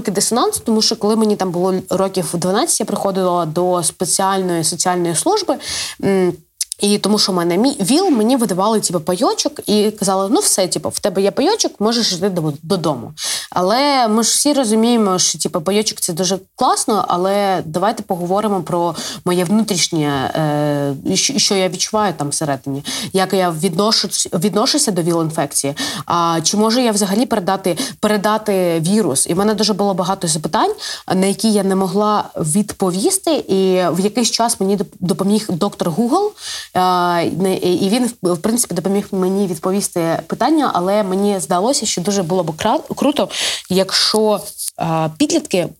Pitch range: 180-215 Hz